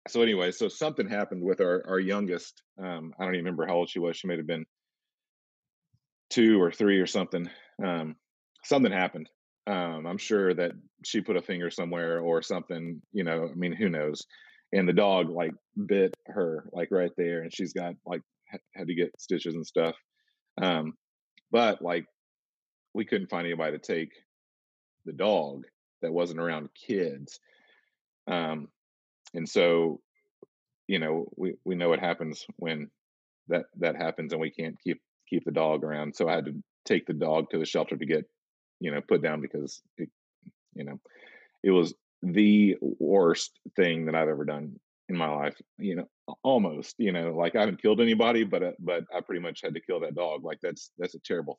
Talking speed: 185 wpm